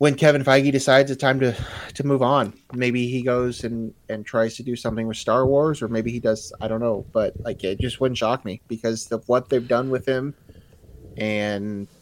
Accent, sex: American, male